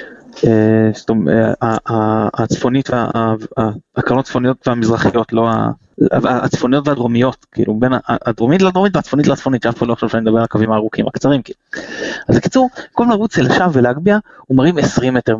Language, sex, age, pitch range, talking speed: Hebrew, male, 20-39, 115-160 Hz, 120 wpm